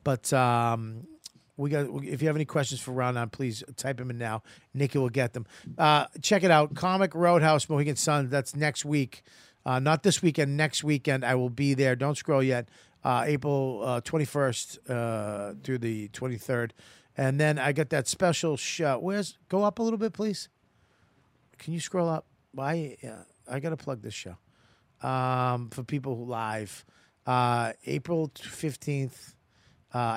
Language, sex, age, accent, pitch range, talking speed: English, male, 40-59, American, 125-155 Hz, 170 wpm